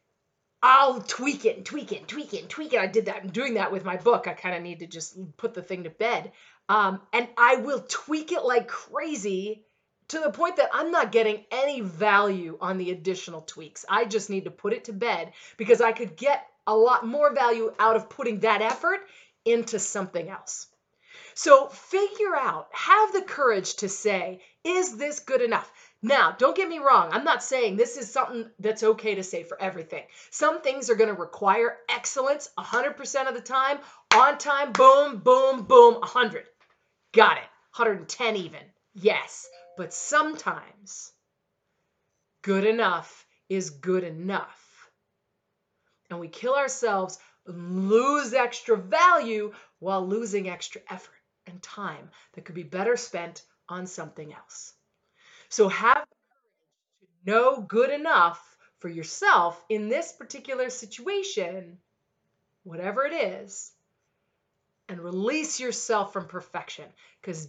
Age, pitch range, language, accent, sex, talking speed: 30-49, 190-275 Hz, English, American, female, 155 wpm